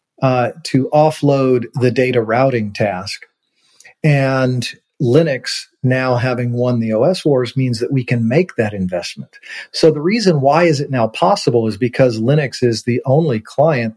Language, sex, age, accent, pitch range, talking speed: English, male, 40-59, American, 110-130 Hz, 160 wpm